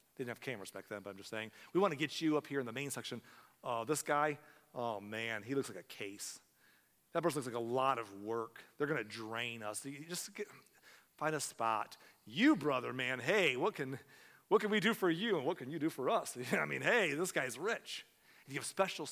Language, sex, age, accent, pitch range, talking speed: English, male, 40-59, American, 130-170 Hz, 235 wpm